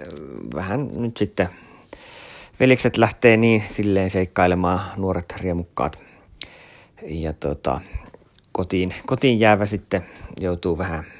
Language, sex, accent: Finnish, male, native